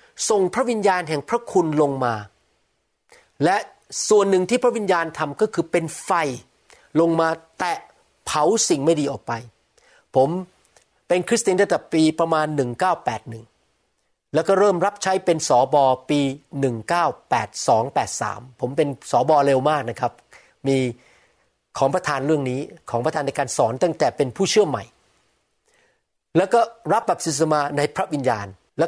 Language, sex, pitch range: Thai, male, 135-180 Hz